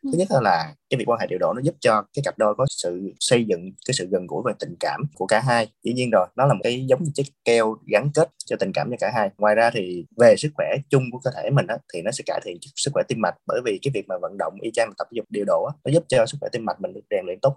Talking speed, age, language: 325 wpm, 20-39, Vietnamese